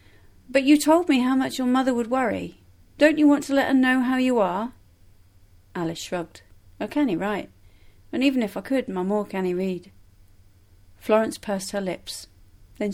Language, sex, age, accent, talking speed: English, female, 40-59, British, 190 wpm